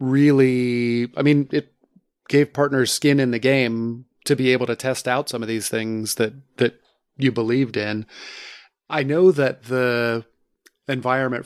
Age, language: 30-49, English